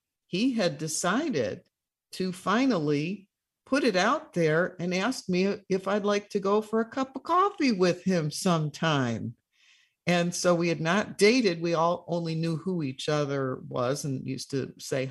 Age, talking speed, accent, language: 50-69, 170 wpm, American, English